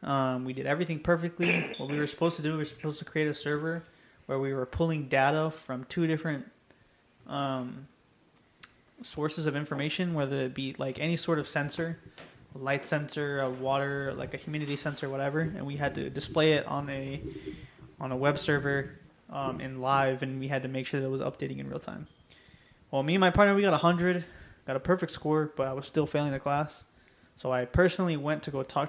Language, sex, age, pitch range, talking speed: English, male, 20-39, 135-155 Hz, 215 wpm